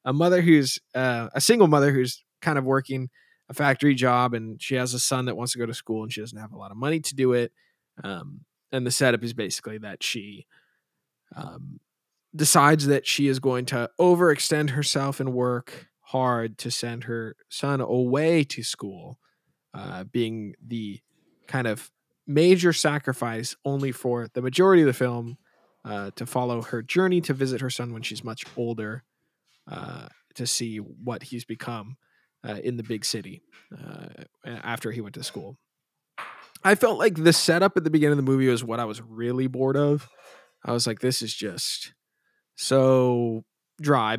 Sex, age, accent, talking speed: male, 20-39, American, 180 wpm